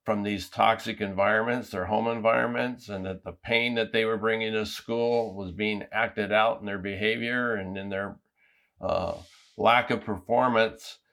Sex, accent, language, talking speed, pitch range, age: male, American, English, 165 wpm, 100-115 Hz, 50-69